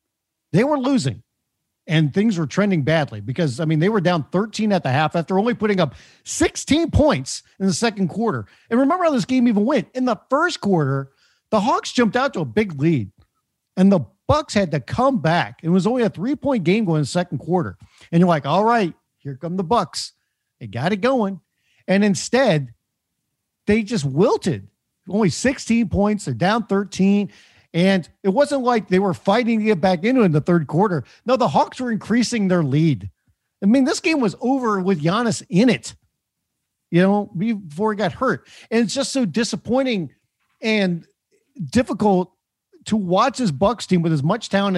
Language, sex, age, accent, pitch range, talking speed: English, male, 50-69, American, 170-235 Hz, 195 wpm